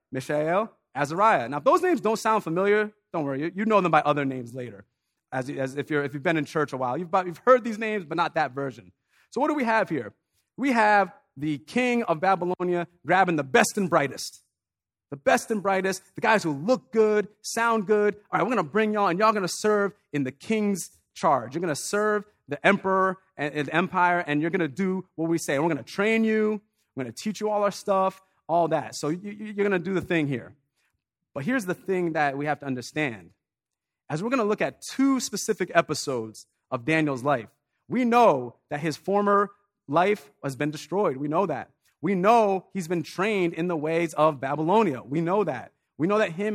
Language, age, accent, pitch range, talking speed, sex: English, 30-49, American, 150-210 Hz, 225 wpm, male